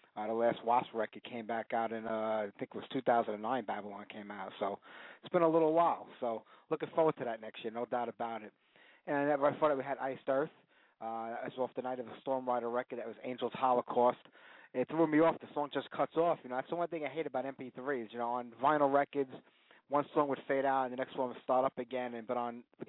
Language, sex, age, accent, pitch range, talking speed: English, male, 30-49, American, 115-145 Hz, 260 wpm